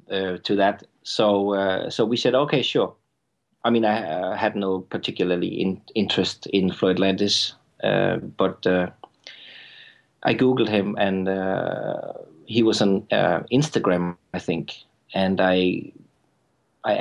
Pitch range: 95-110 Hz